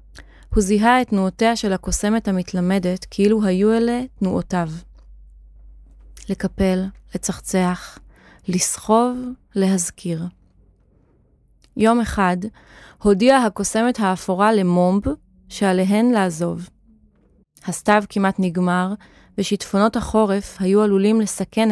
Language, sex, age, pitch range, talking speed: Hebrew, female, 20-39, 180-215 Hz, 85 wpm